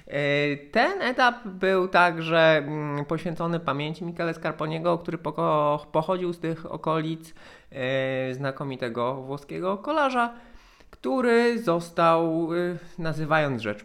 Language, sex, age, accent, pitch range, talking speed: Polish, male, 20-39, native, 135-170 Hz, 85 wpm